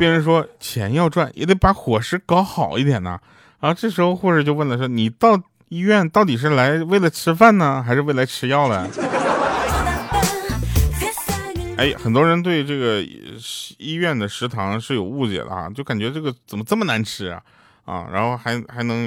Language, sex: Chinese, male